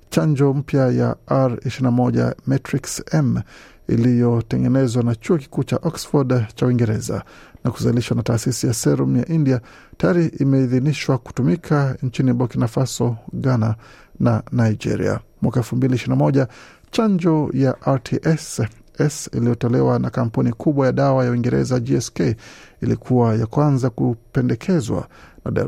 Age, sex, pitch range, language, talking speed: 50-69, male, 115-145 Hz, Swahili, 115 wpm